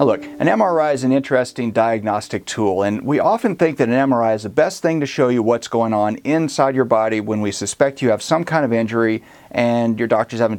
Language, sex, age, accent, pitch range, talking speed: English, male, 40-59, American, 110-135 Hz, 240 wpm